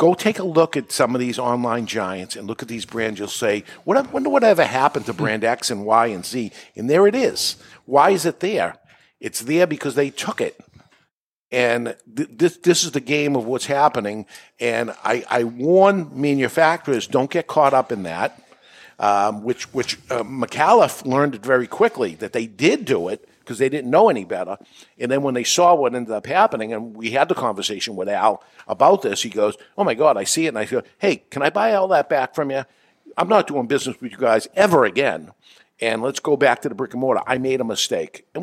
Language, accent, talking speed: English, American, 225 wpm